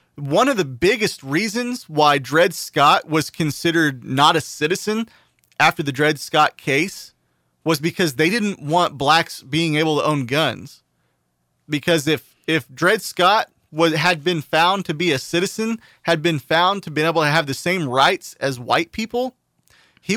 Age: 30-49